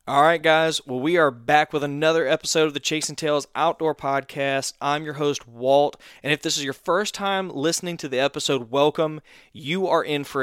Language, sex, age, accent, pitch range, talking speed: English, male, 20-39, American, 130-150 Hz, 200 wpm